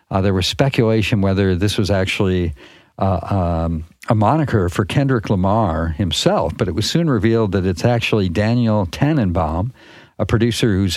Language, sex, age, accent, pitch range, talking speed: English, male, 50-69, American, 95-120 Hz, 160 wpm